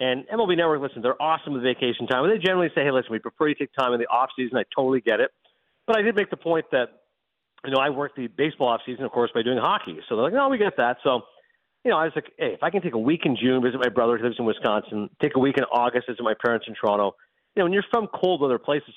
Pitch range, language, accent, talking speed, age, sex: 125-175 Hz, English, American, 300 wpm, 50-69, male